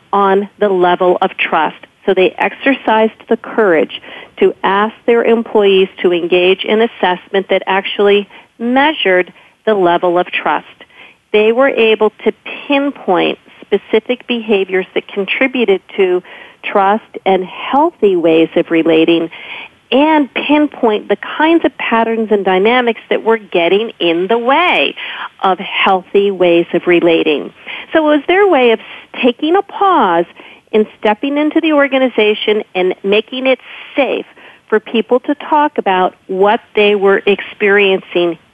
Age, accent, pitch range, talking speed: 40-59, American, 185-250 Hz, 135 wpm